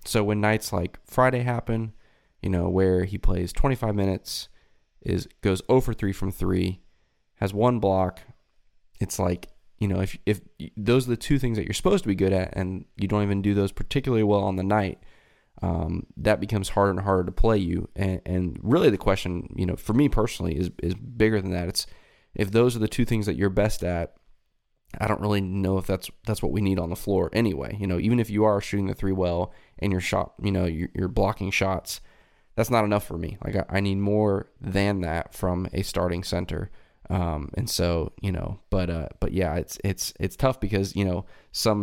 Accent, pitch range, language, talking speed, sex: American, 90-105 Hz, English, 220 wpm, male